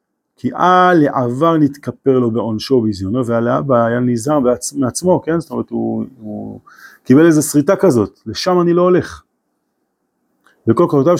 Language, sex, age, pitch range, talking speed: Hebrew, male, 30-49, 115-165 Hz, 145 wpm